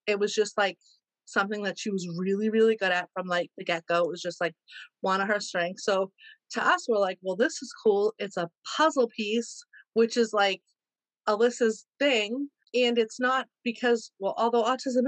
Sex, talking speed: female, 195 wpm